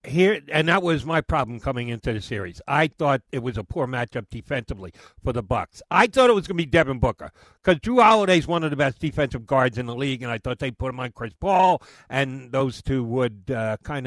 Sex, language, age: male, English, 50-69